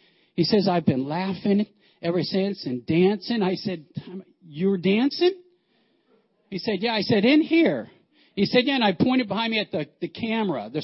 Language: English